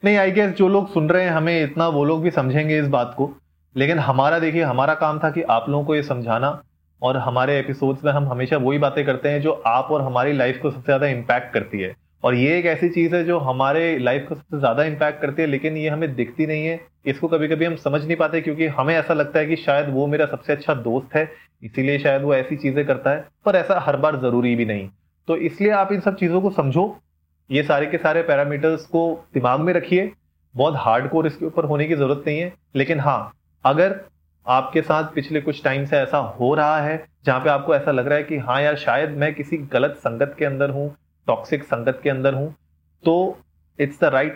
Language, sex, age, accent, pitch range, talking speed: Hindi, male, 30-49, native, 130-160 Hz, 235 wpm